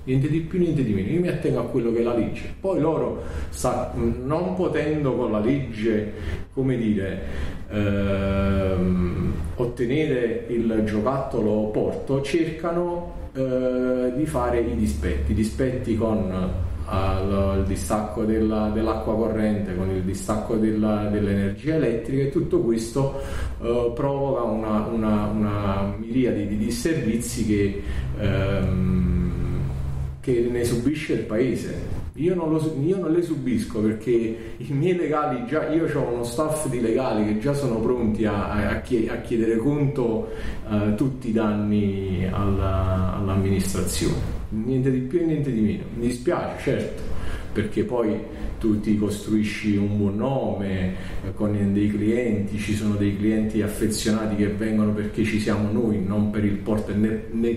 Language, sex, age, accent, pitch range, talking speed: Italian, male, 40-59, native, 100-120 Hz, 135 wpm